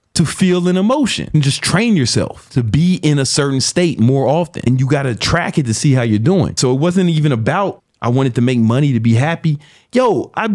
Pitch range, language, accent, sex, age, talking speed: 120-170 Hz, English, American, male, 30-49, 235 wpm